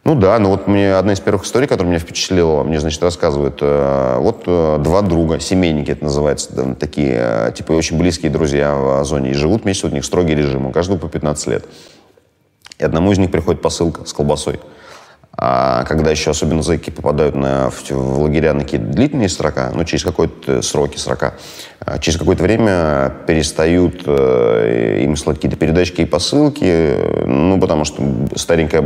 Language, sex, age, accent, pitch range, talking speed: Russian, male, 30-49, native, 75-90 Hz, 175 wpm